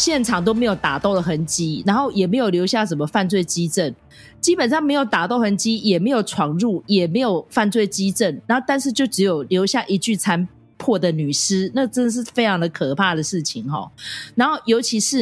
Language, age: Chinese, 30-49